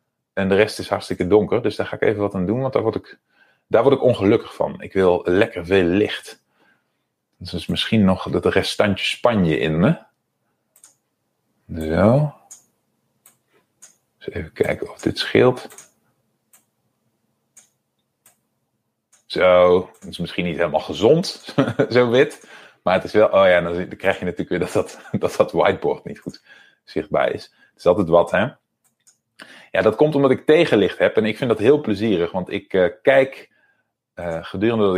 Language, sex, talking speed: Dutch, male, 160 wpm